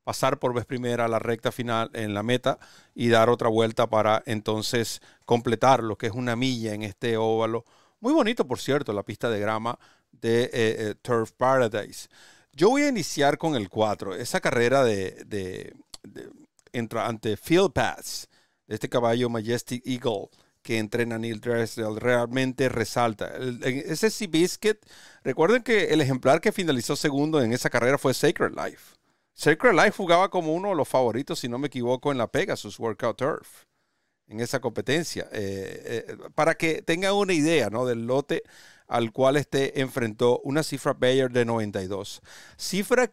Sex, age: male, 40-59